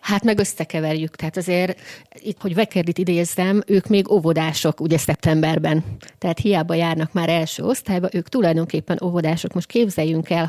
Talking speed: 145 wpm